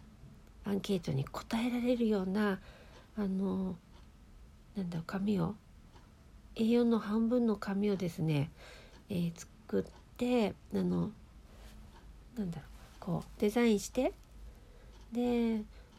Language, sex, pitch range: Japanese, female, 190-240 Hz